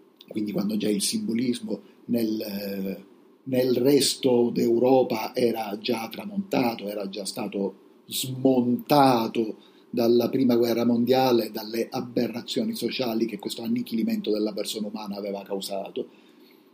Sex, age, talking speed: male, 50-69, 110 wpm